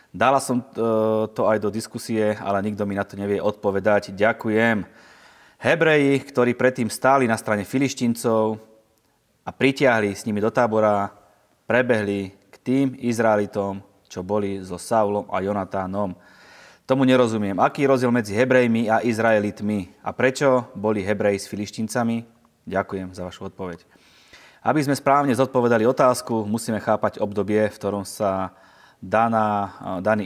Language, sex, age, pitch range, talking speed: Slovak, male, 30-49, 100-120 Hz, 135 wpm